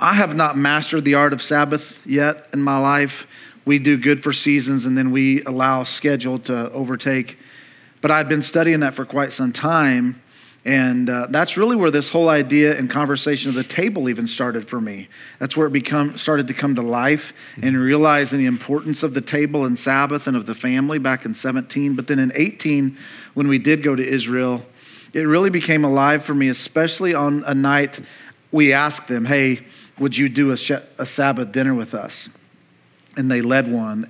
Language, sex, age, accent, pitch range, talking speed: English, male, 40-59, American, 130-155 Hz, 195 wpm